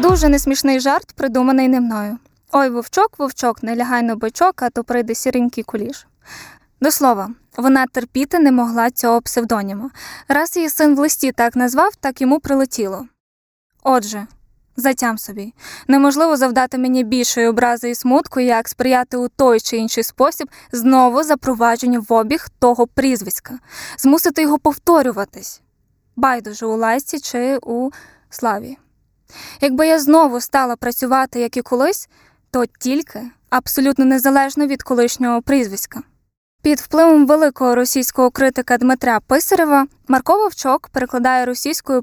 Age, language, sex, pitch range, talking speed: 10-29, Ukrainian, female, 240-280 Hz, 135 wpm